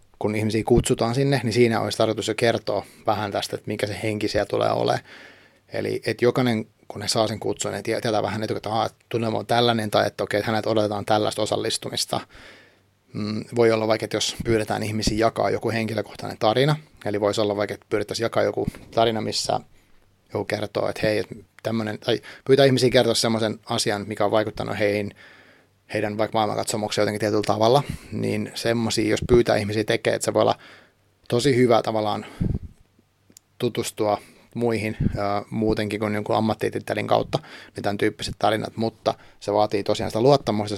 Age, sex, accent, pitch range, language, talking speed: 30-49, male, native, 105-115 Hz, Finnish, 170 wpm